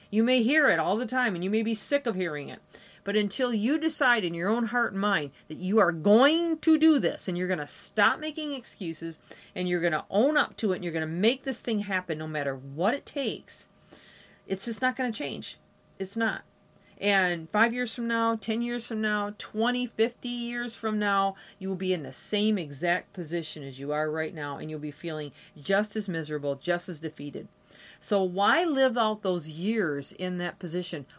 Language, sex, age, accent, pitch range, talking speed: English, female, 40-59, American, 175-230 Hz, 220 wpm